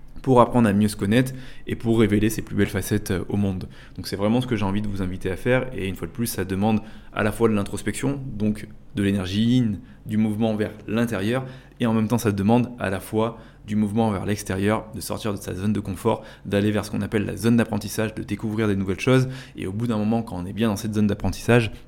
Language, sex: French, male